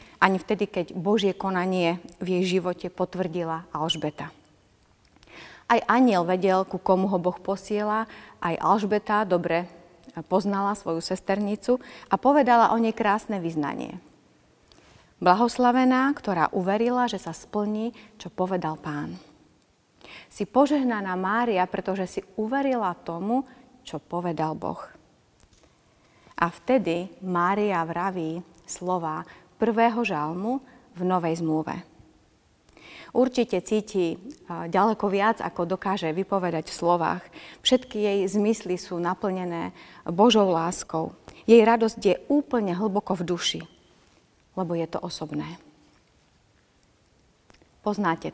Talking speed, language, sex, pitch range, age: 110 wpm, Slovak, female, 175-215 Hz, 30-49